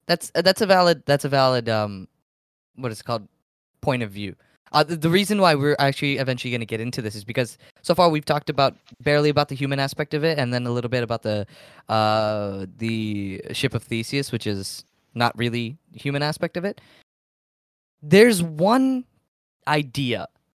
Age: 20-39